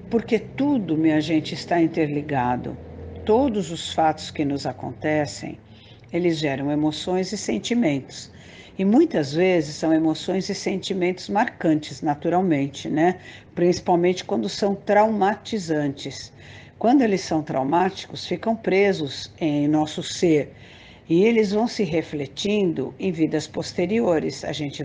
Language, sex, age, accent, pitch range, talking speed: Portuguese, female, 60-79, Brazilian, 145-185 Hz, 120 wpm